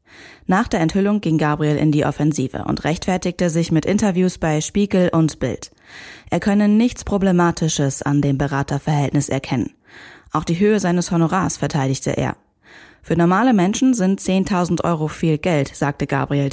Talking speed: 155 wpm